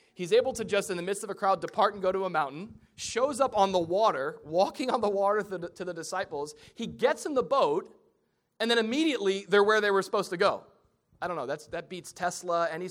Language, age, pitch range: English, 30-49, 175-230 Hz